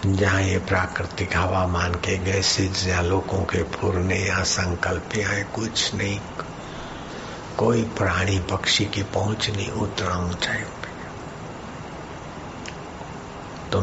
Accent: native